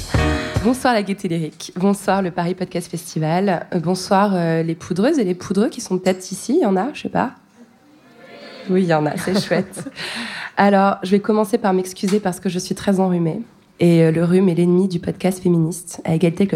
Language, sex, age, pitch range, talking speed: French, female, 20-39, 175-200 Hz, 210 wpm